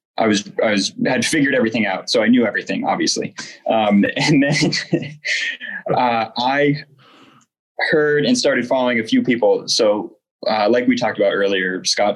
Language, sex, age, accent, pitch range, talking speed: English, male, 20-39, American, 105-165 Hz, 160 wpm